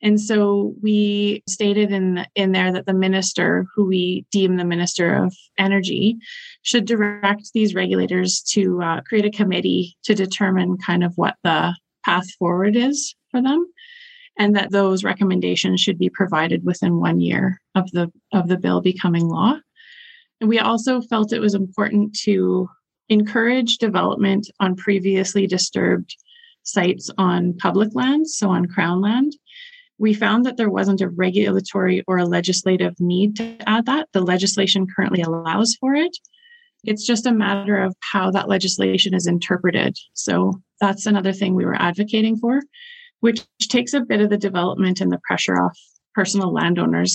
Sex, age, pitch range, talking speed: female, 20-39, 180-220 Hz, 160 wpm